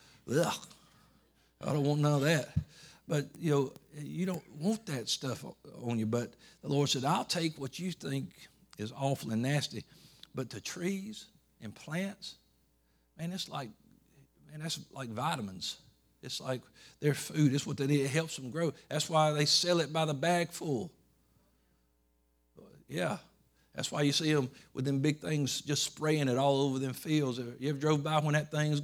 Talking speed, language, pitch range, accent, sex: 180 wpm, English, 130-155 Hz, American, male